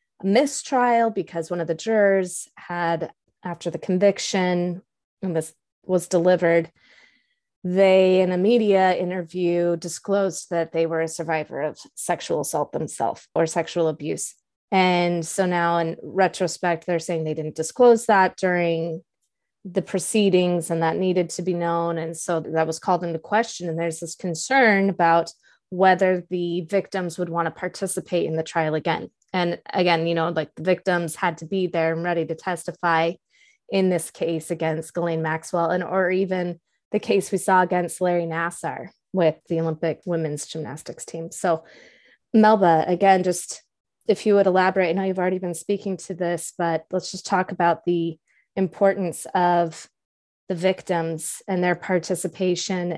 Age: 20-39